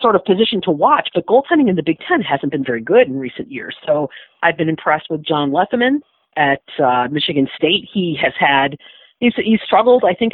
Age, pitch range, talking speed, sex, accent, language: 40-59, 145-195 Hz, 210 wpm, female, American, English